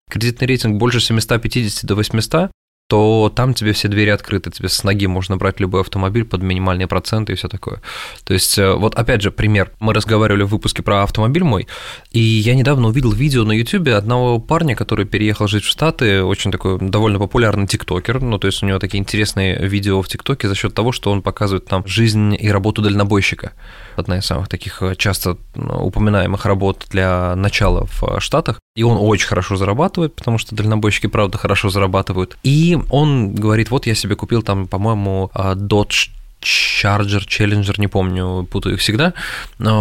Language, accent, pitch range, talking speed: Russian, native, 95-115 Hz, 180 wpm